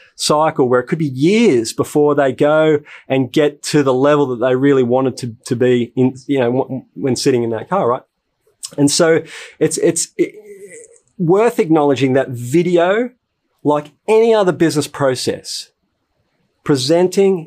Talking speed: 150 wpm